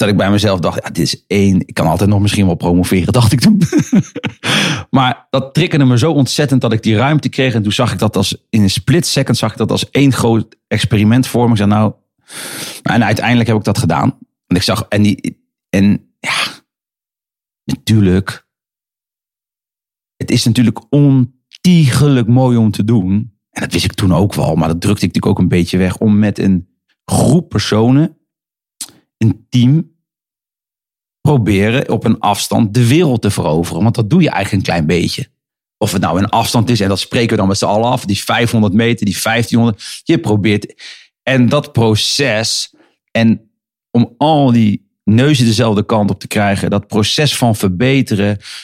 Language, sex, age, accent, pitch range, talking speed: Dutch, male, 40-59, Dutch, 100-125 Hz, 190 wpm